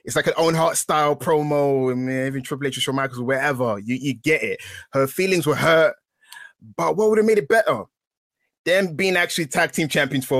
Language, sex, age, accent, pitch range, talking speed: English, male, 20-39, British, 145-240 Hz, 225 wpm